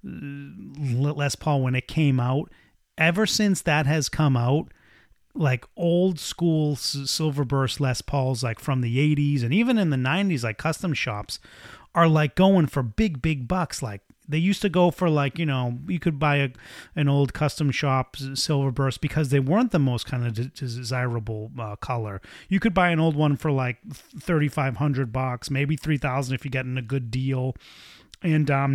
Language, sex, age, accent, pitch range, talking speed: English, male, 30-49, American, 125-165 Hz, 185 wpm